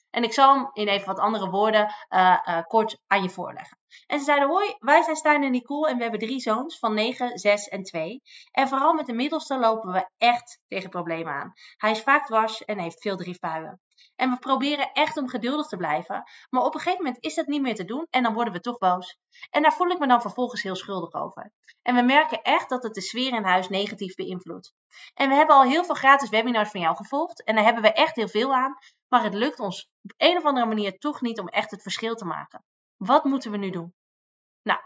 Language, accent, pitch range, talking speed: Dutch, Dutch, 205-275 Hz, 245 wpm